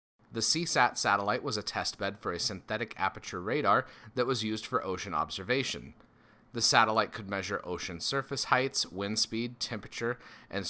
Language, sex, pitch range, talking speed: English, male, 95-125 Hz, 155 wpm